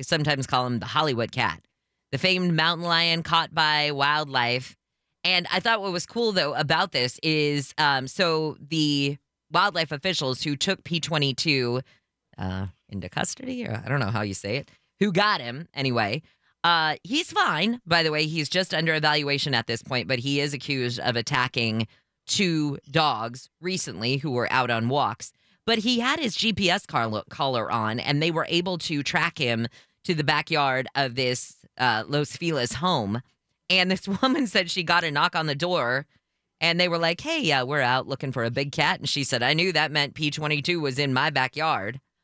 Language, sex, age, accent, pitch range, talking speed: English, female, 20-39, American, 130-170 Hz, 190 wpm